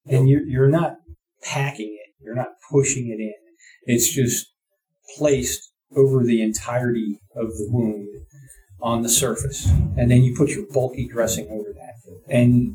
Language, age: English, 40-59